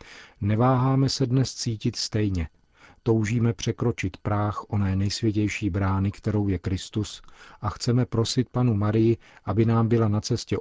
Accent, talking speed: native, 135 wpm